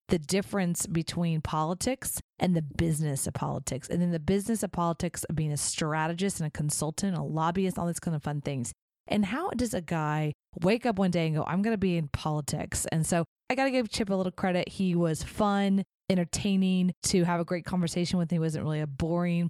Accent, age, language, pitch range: American, 30-49, English, 155-195 Hz